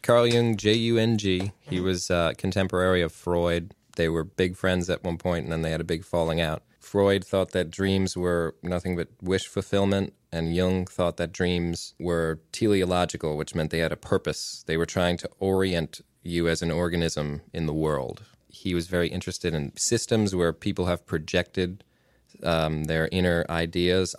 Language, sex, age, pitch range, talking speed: English, male, 20-39, 85-95 Hz, 180 wpm